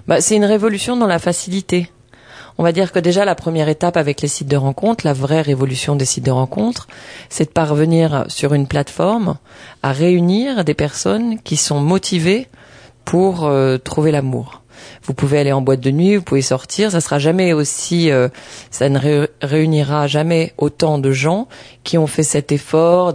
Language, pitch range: French, 135-165 Hz